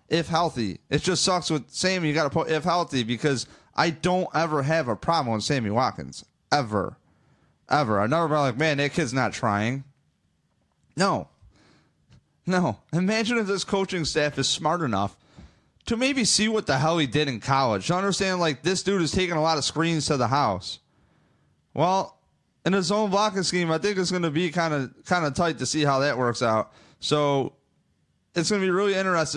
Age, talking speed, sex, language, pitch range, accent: 30-49, 195 wpm, male, English, 130-175 Hz, American